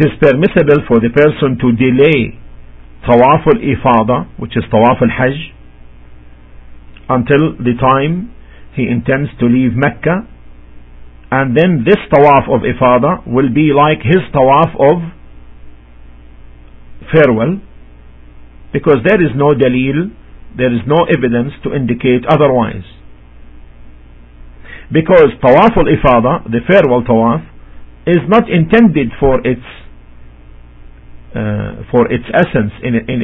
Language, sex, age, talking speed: English, male, 50-69, 115 wpm